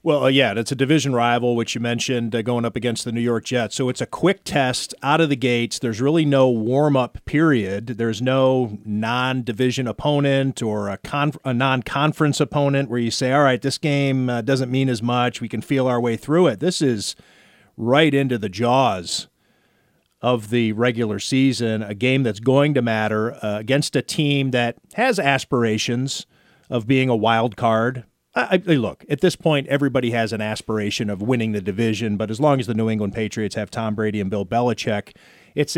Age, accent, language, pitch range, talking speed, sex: 40-59, American, English, 110-135 Hz, 195 wpm, male